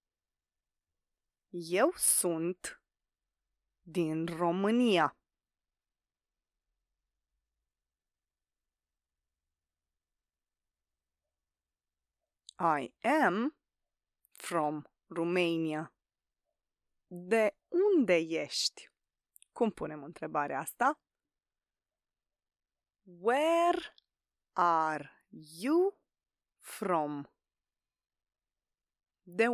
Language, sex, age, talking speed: Romanian, female, 30-49, 40 wpm